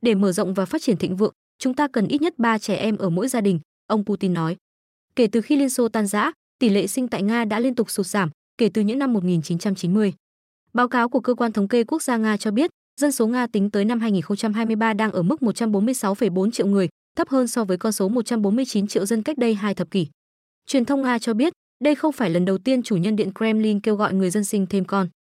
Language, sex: Vietnamese, female